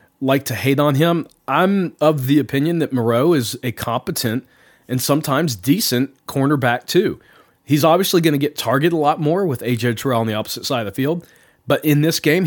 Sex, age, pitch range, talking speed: male, 30-49, 125-160 Hz, 200 wpm